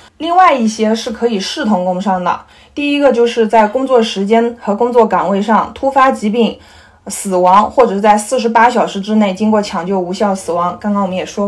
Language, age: Chinese, 20-39